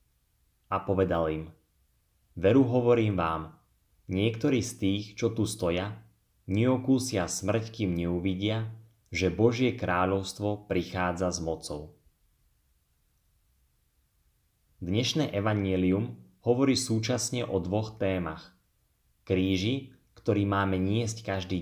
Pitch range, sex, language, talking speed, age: 90-110 Hz, male, Slovak, 95 wpm, 20-39